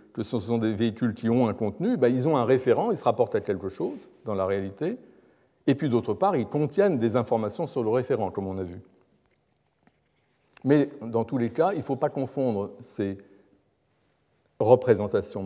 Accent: French